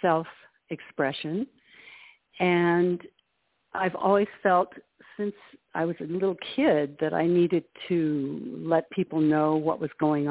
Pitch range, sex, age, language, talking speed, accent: 150-185 Hz, female, 60-79, English, 120 wpm, American